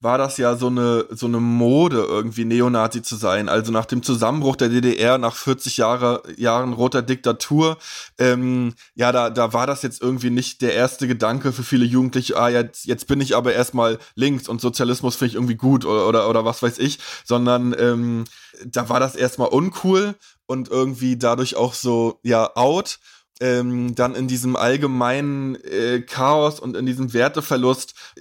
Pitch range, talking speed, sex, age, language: 120-130 Hz, 175 wpm, male, 20-39, German